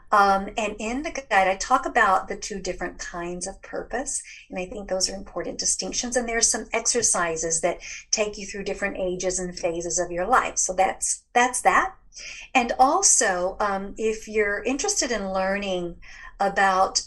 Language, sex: English, female